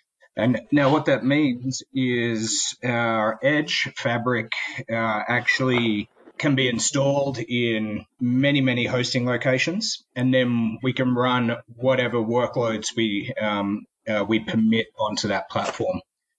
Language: English